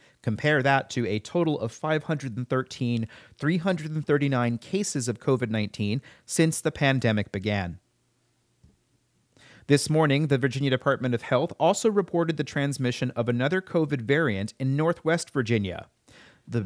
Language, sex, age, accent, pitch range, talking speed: English, male, 30-49, American, 115-160 Hz, 125 wpm